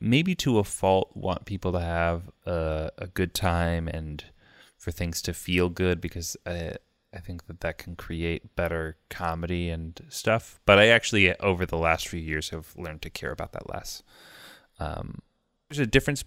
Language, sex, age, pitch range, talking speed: English, male, 20-39, 85-100 Hz, 180 wpm